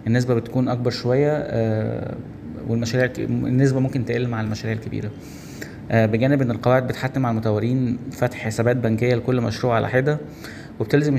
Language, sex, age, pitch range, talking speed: Arabic, male, 20-39, 115-130 Hz, 140 wpm